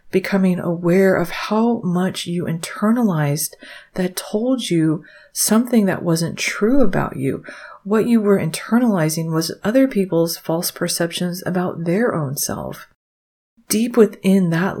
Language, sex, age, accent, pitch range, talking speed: English, female, 30-49, American, 165-205 Hz, 130 wpm